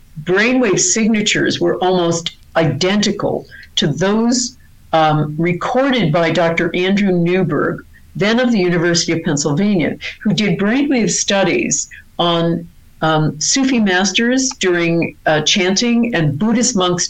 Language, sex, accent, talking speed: English, female, American, 115 wpm